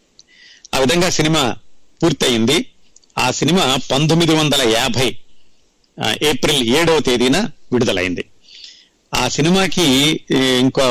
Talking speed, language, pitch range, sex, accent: 95 wpm, Telugu, 125-170 Hz, male, native